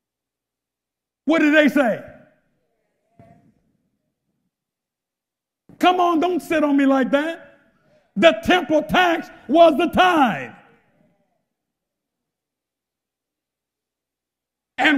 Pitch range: 205-270 Hz